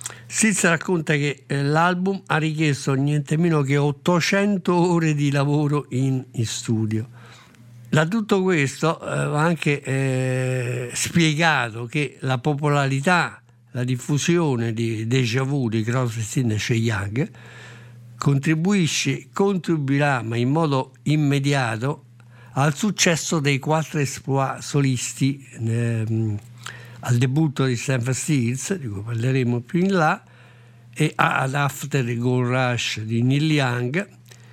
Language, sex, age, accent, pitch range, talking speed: Italian, male, 60-79, native, 120-150 Hz, 120 wpm